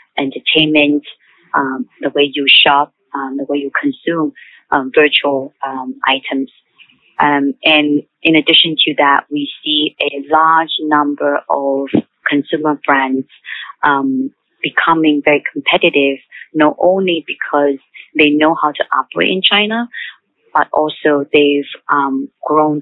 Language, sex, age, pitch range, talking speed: English, female, 20-39, 145-165 Hz, 125 wpm